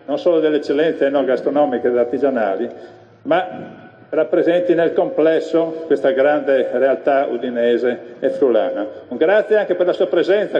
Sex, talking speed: male, 140 wpm